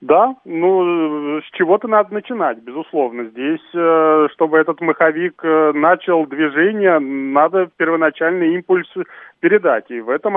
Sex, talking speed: male, 115 wpm